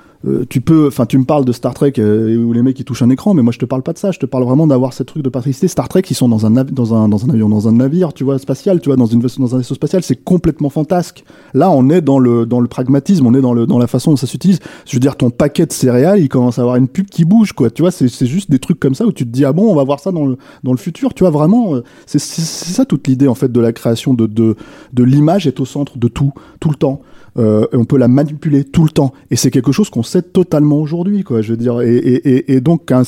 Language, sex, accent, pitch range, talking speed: French, male, French, 120-150 Hz, 315 wpm